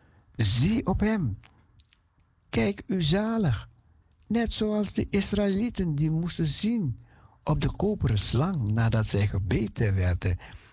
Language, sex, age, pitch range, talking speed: Dutch, male, 60-79, 95-145 Hz, 115 wpm